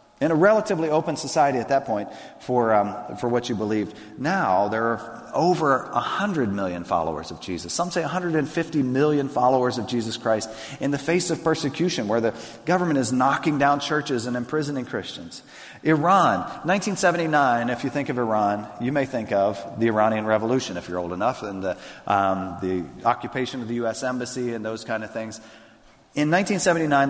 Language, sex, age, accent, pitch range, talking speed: English, male, 40-59, American, 110-150 Hz, 175 wpm